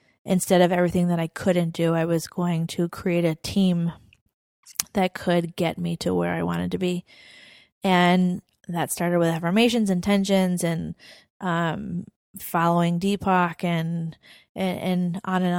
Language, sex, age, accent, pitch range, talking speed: English, female, 20-39, American, 170-190 Hz, 155 wpm